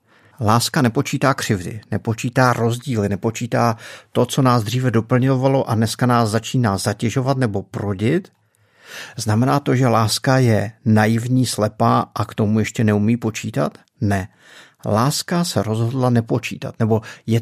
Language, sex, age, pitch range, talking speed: Czech, male, 50-69, 105-130 Hz, 130 wpm